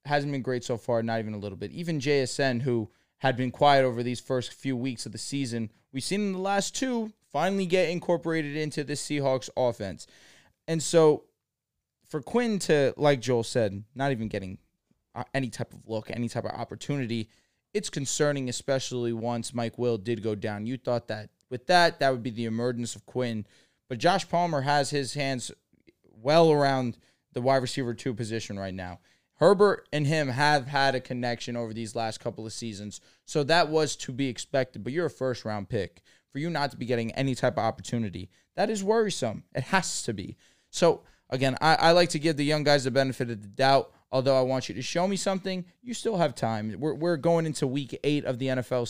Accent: American